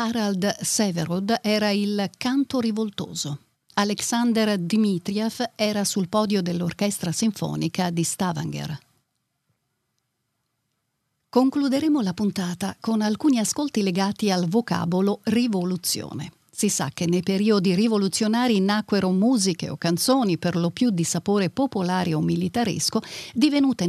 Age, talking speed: 40-59, 110 wpm